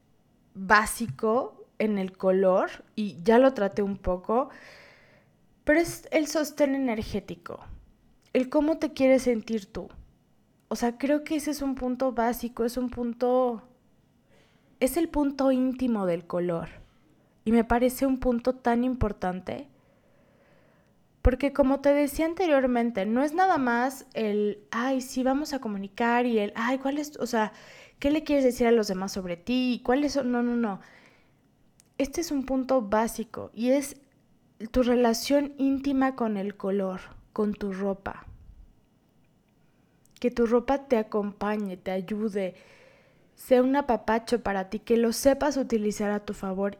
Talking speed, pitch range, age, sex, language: 150 wpm, 215-270 Hz, 20-39, female, Spanish